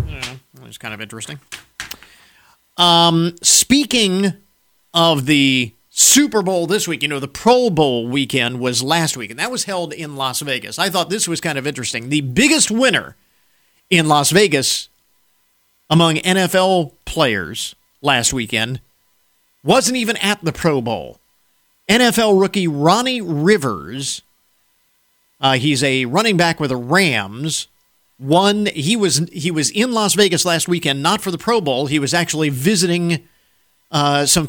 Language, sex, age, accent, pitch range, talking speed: English, male, 50-69, American, 145-195 Hz, 150 wpm